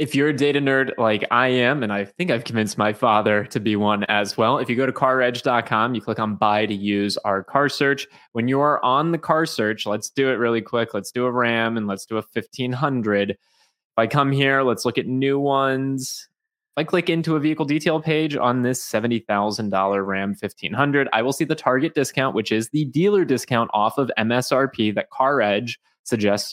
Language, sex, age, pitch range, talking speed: English, male, 20-39, 105-140 Hz, 215 wpm